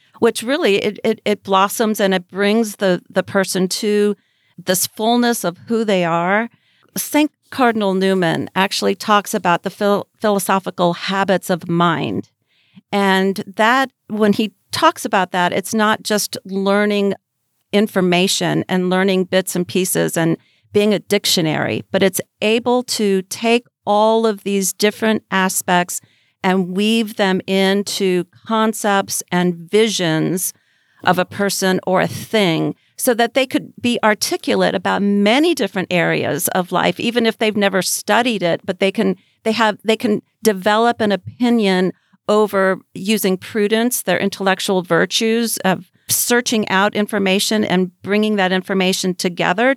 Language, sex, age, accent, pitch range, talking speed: English, female, 40-59, American, 185-215 Hz, 140 wpm